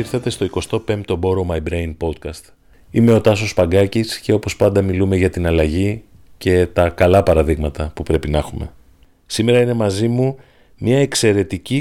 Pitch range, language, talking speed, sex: 90-120 Hz, Greek, 165 wpm, male